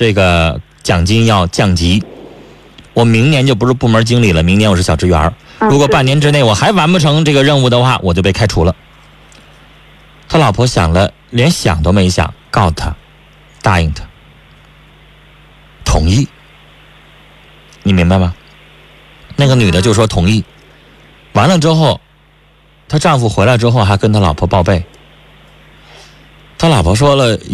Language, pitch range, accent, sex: Chinese, 90-135 Hz, native, male